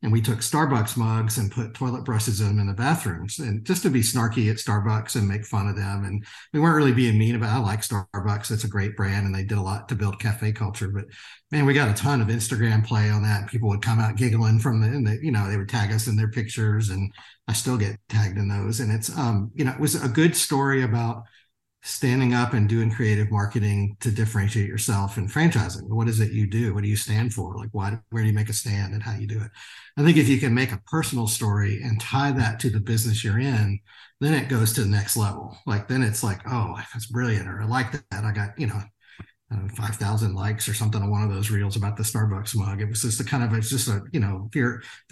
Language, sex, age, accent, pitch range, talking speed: English, male, 50-69, American, 105-120 Hz, 265 wpm